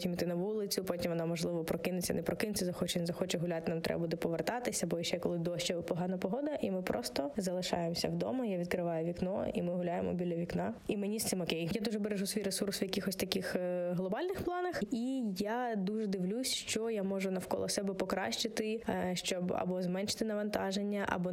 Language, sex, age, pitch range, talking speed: Ukrainian, female, 20-39, 180-210 Hz, 190 wpm